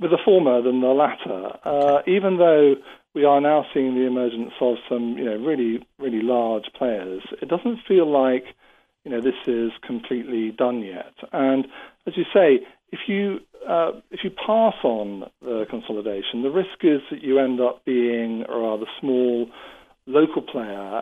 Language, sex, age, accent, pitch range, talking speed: English, male, 50-69, British, 120-150 Hz, 170 wpm